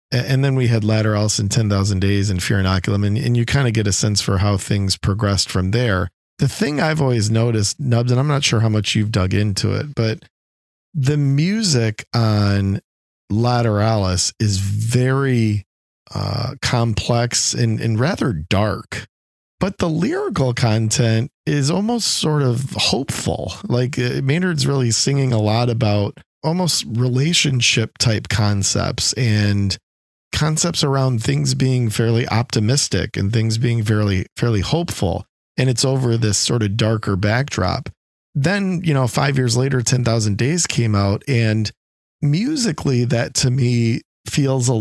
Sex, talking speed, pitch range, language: male, 150 wpm, 105-130 Hz, English